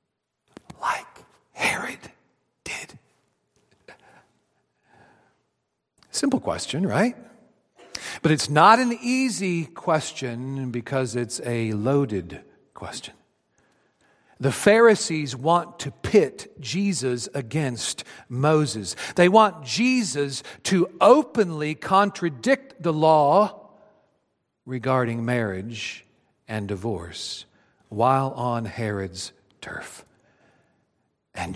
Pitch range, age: 120-180 Hz, 50-69